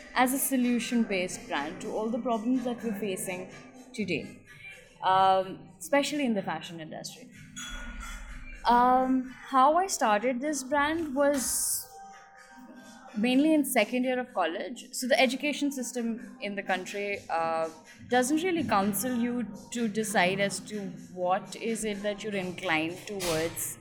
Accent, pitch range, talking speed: Indian, 185-250 Hz, 135 wpm